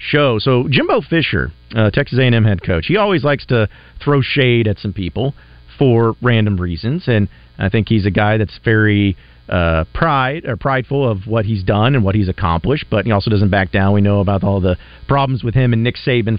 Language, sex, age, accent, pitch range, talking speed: English, male, 40-59, American, 100-140 Hz, 210 wpm